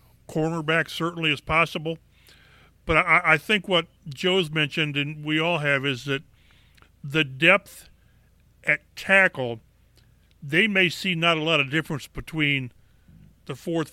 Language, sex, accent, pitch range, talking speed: English, male, American, 145-175 Hz, 140 wpm